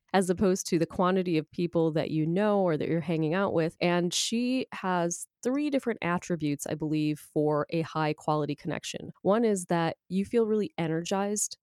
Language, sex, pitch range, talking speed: English, female, 155-195 Hz, 180 wpm